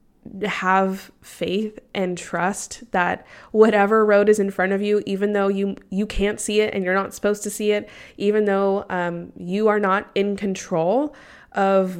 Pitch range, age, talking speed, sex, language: 175-200 Hz, 20-39, 175 wpm, female, English